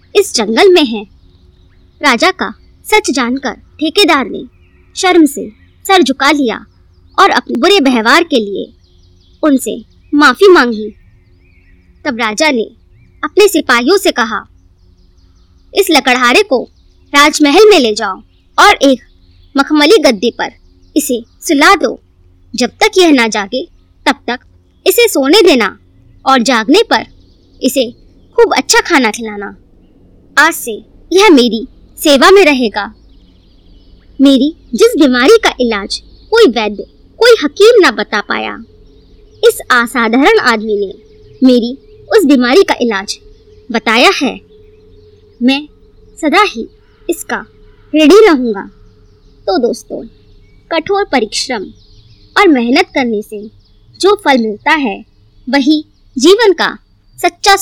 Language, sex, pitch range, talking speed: Hindi, male, 210-345 Hz, 120 wpm